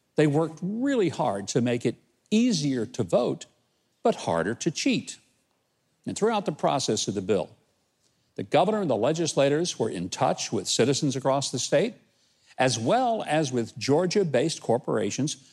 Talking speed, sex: 155 wpm, male